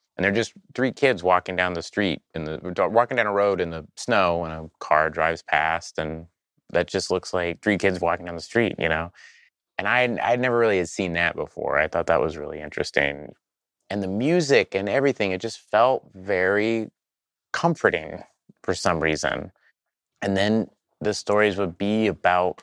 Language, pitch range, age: English, 80-100 Hz, 30-49